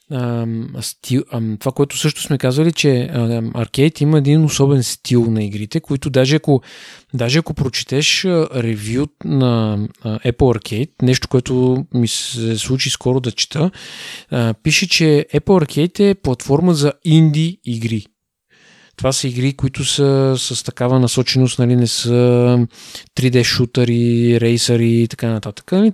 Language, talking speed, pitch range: Bulgarian, 150 wpm, 120-150 Hz